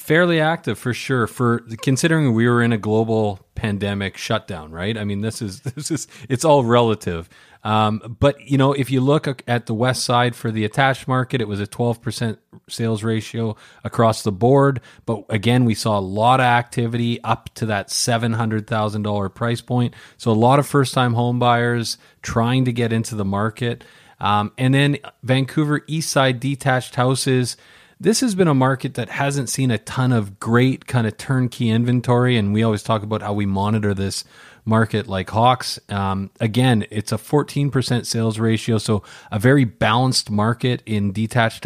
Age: 30-49